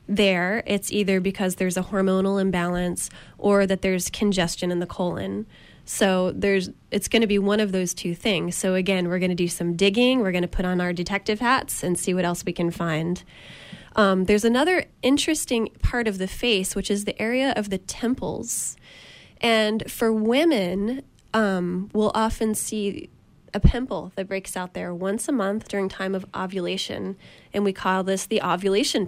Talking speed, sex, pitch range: 185 wpm, female, 185-210 Hz